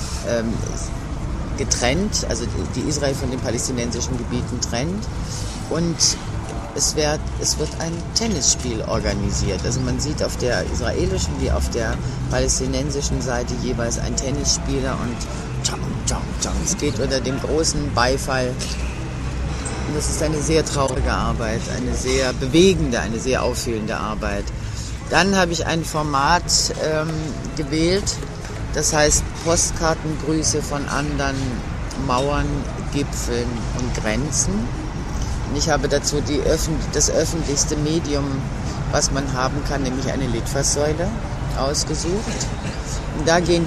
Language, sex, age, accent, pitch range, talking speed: German, female, 50-69, German, 120-150 Hz, 120 wpm